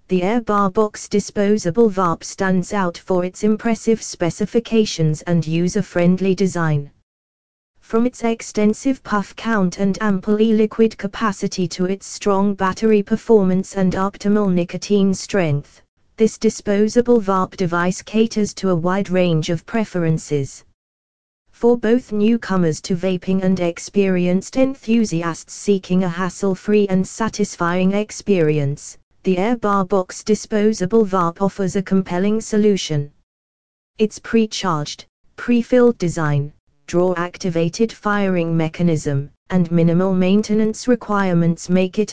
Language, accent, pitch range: English, British, 170-215 Hz